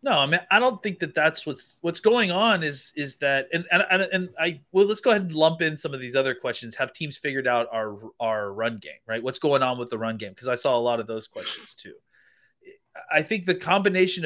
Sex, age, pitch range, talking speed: male, 30-49, 125-170 Hz, 255 wpm